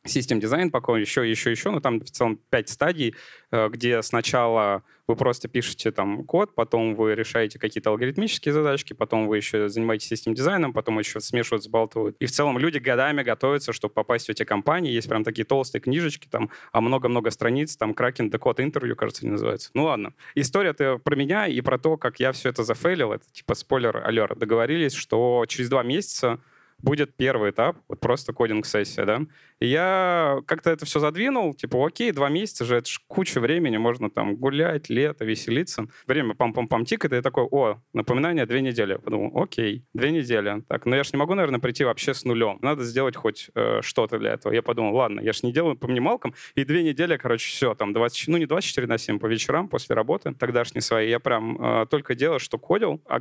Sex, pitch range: male, 115-150 Hz